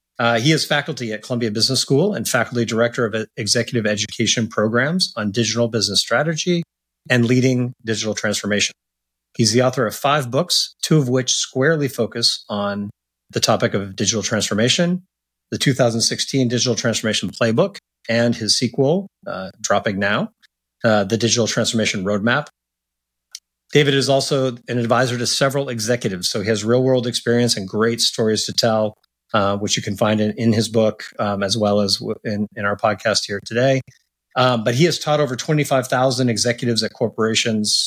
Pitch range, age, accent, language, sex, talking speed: 105-130 Hz, 30-49, American, English, male, 165 wpm